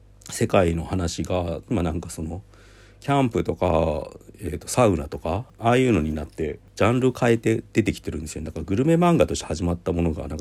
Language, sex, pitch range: Japanese, male, 80-105 Hz